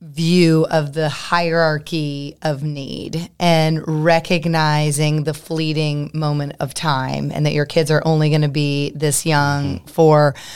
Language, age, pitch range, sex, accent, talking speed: English, 30-49, 150-170 Hz, female, American, 140 wpm